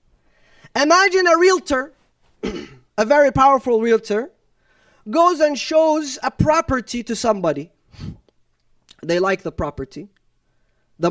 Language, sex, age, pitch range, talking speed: English, male, 30-49, 230-325 Hz, 105 wpm